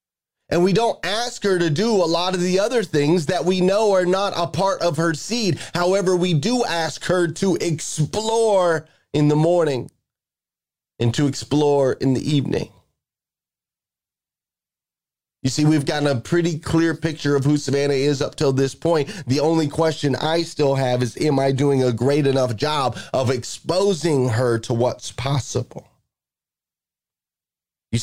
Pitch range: 135-170 Hz